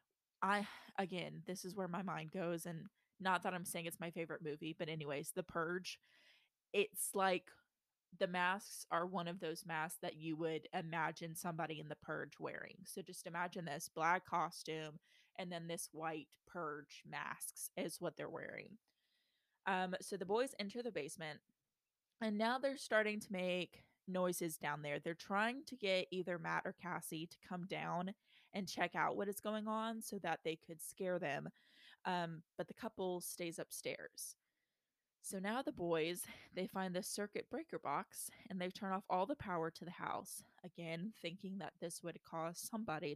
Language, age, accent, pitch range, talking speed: English, 20-39, American, 165-195 Hz, 180 wpm